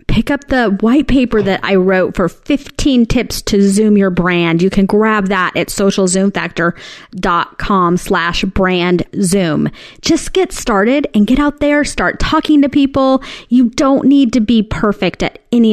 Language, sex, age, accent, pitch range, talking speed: English, female, 30-49, American, 175-240 Hz, 165 wpm